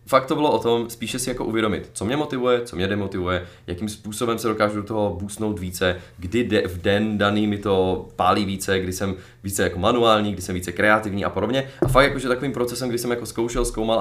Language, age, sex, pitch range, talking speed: Czech, 20-39, male, 100-120 Hz, 230 wpm